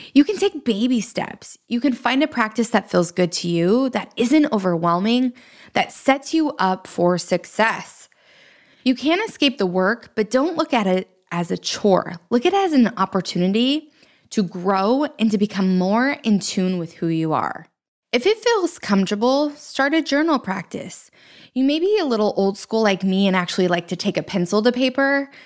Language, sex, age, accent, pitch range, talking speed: English, female, 20-39, American, 185-270 Hz, 190 wpm